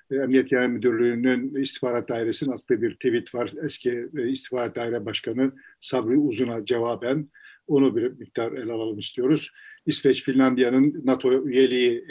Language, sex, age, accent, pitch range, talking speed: Turkish, male, 50-69, native, 130-165 Hz, 130 wpm